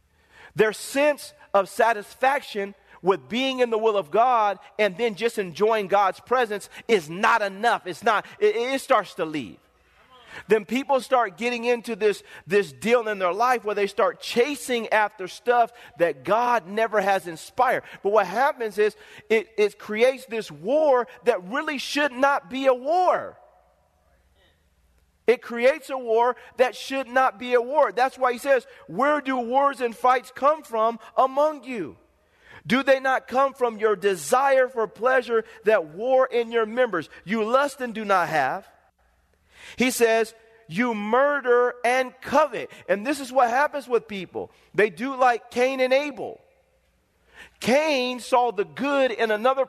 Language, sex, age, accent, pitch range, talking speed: English, male, 40-59, American, 210-260 Hz, 160 wpm